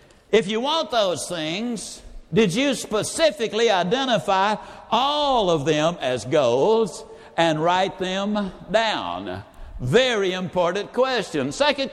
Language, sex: English, male